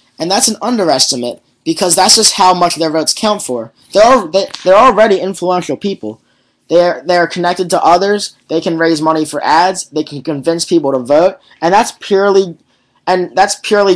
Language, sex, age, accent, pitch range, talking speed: English, male, 20-39, American, 150-185 Hz, 195 wpm